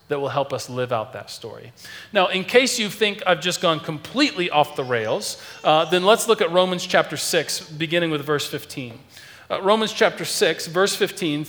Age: 40-59